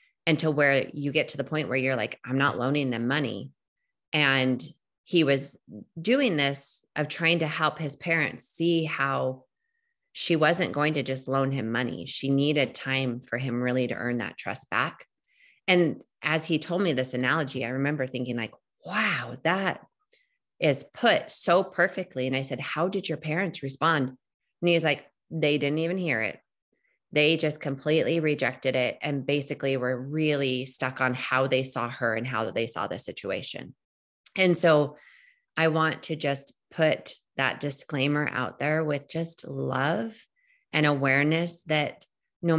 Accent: American